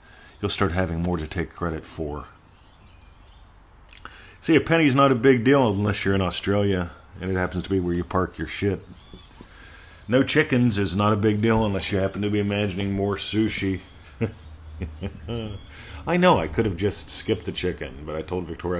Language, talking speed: English, 180 wpm